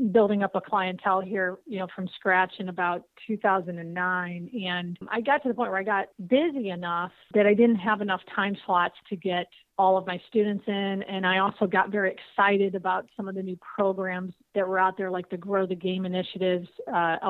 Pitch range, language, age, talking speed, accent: 180-205 Hz, English, 40-59, 210 wpm, American